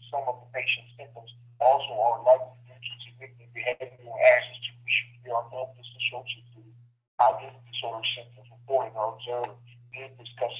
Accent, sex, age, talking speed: American, male, 40-59, 175 wpm